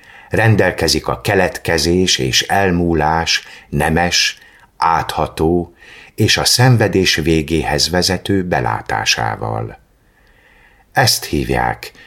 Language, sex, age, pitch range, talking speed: Hungarian, male, 50-69, 75-105 Hz, 75 wpm